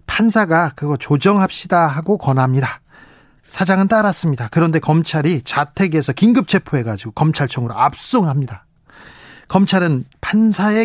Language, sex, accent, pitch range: Korean, male, native, 150-220 Hz